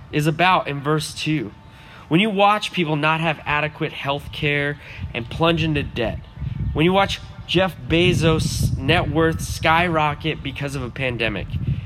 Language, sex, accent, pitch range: English, male, American, 130-170 Hz